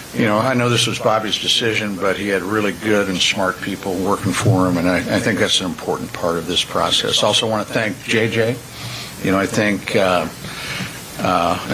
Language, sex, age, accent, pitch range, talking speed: English, male, 60-79, American, 100-120 Hz, 215 wpm